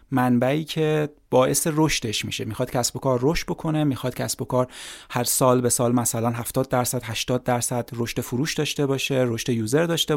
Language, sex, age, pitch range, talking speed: Persian, male, 30-49, 120-145 Hz, 185 wpm